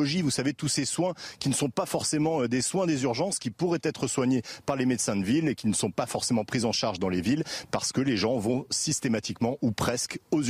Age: 40-59